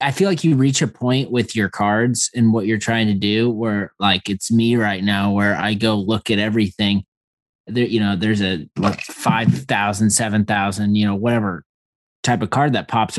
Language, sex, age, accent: English, male, 30-49, American